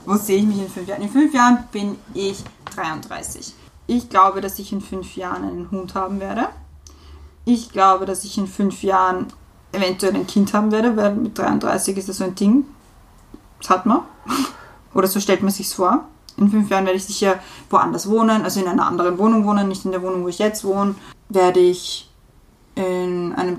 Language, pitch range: German, 185-210 Hz